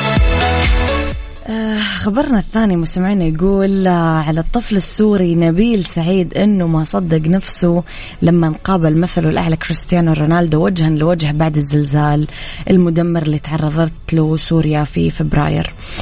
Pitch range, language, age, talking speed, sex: 155-175 Hz, Arabic, 20-39, 110 wpm, female